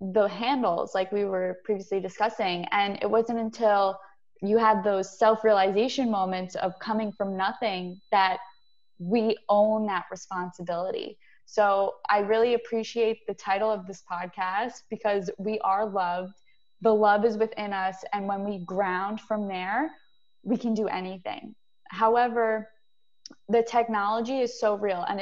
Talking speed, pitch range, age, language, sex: 145 wpm, 200-225 Hz, 20-39, English, female